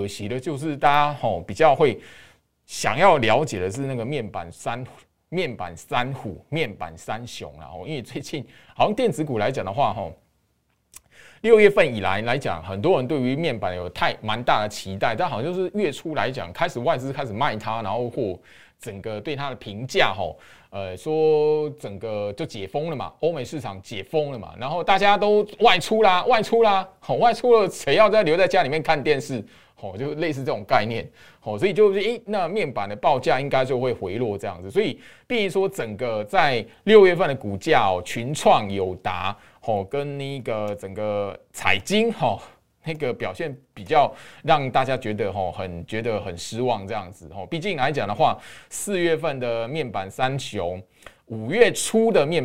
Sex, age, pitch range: male, 20-39, 105-160 Hz